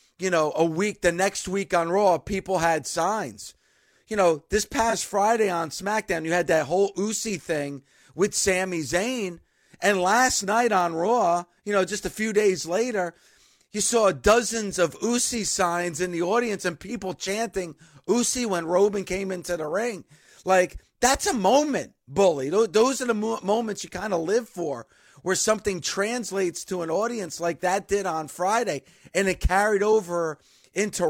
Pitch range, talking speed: 170-215 Hz, 170 wpm